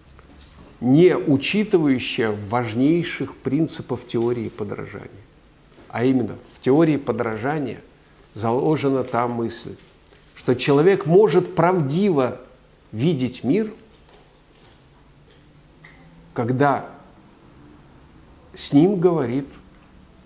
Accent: native